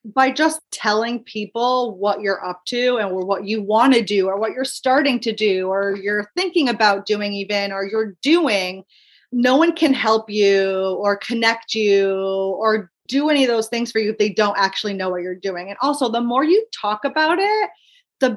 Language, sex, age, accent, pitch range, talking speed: English, female, 30-49, American, 210-260 Hz, 205 wpm